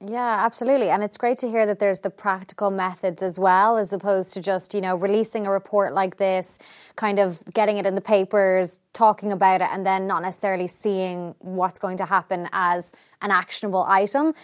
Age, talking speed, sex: 20-39, 200 wpm, female